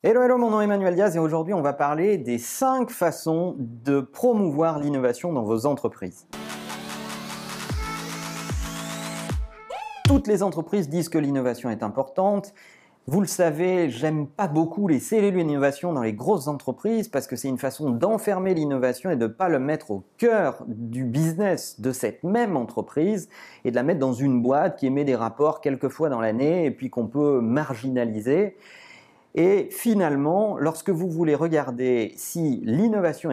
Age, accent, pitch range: 40-59, French, 130-195 Hz